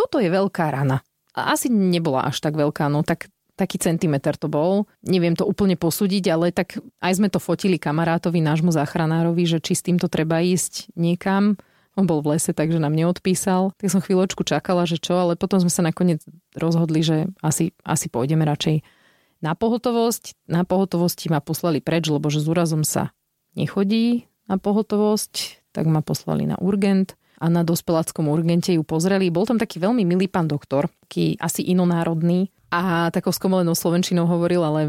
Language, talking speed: Slovak, 175 wpm